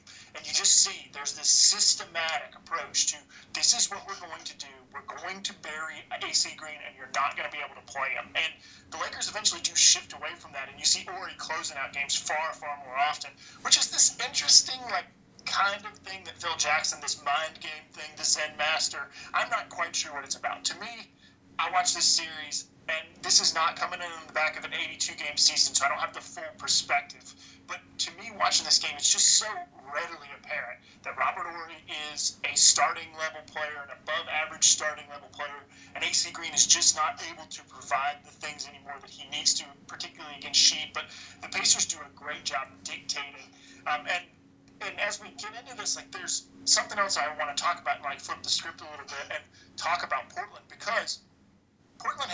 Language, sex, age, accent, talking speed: English, male, 30-49, American, 210 wpm